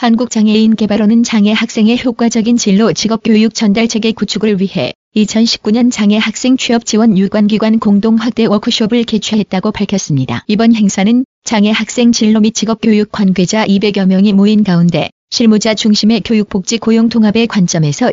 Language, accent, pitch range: Korean, native, 200-225 Hz